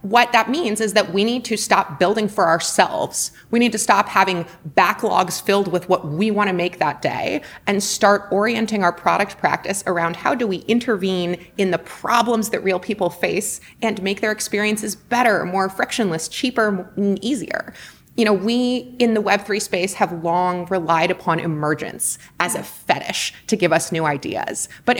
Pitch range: 175-220 Hz